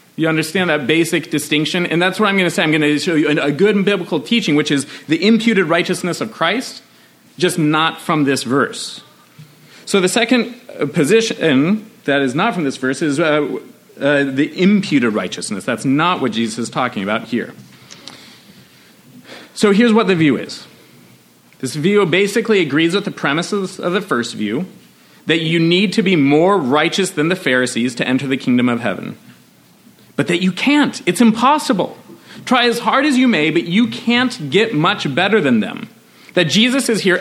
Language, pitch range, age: English, 140-210 Hz, 40-59